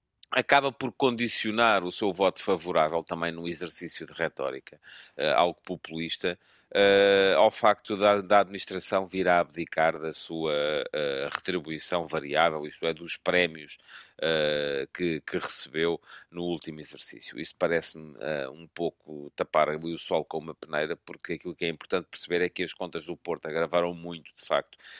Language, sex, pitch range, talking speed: Portuguese, male, 85-95 Hz, 150 wpm